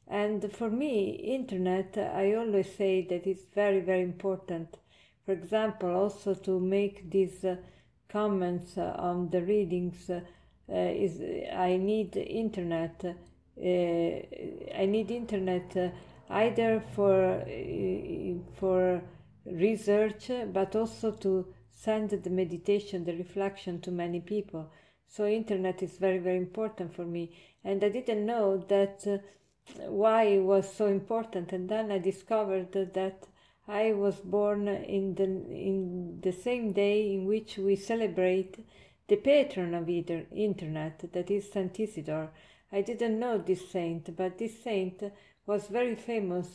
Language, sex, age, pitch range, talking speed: English, female, 50-69, 180-210 Hz, 135 wpm